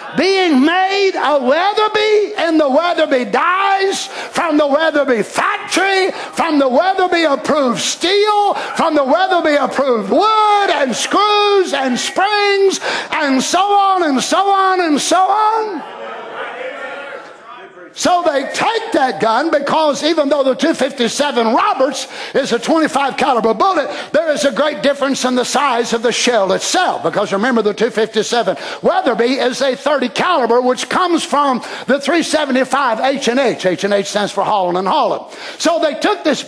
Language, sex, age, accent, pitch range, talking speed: English, male, 50-69, American, 255-360 Hz, 150 wpm